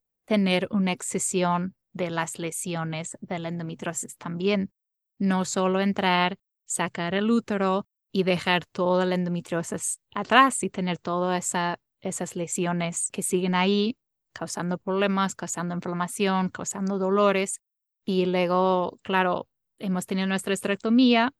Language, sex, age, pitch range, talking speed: Spanish, female, 20-39, 180-205 Hz, 125 wpm